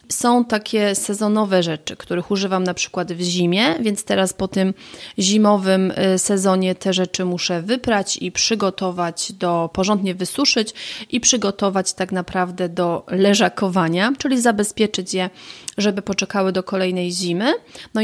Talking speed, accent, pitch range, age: 135 wpm, native, 185-225 Hz, 30-49